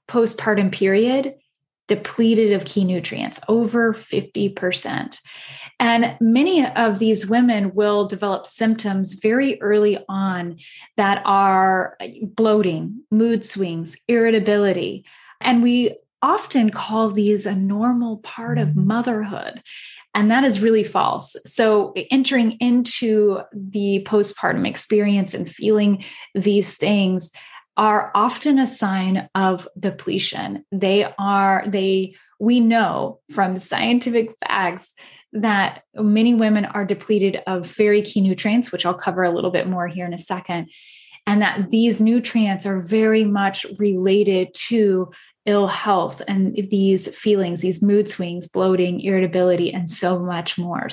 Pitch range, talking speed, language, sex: 190-225 Hz, 125 wpm, English, female